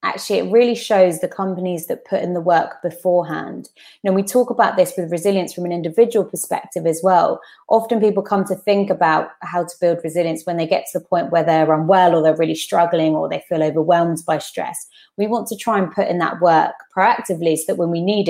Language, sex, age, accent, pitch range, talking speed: English, female, 20-39, British, 165-200 Hz, 225 wpm